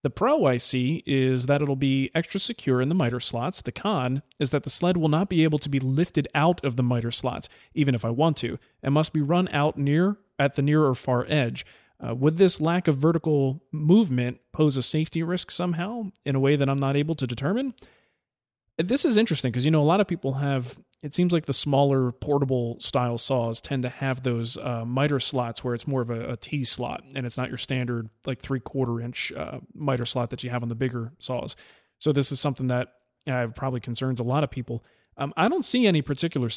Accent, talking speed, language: American, 230 wpm, English